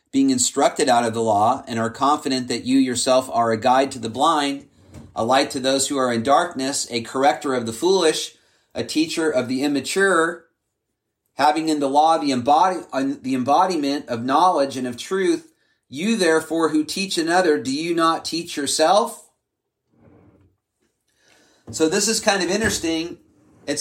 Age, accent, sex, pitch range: 40-59, American, male, 135-170 Hz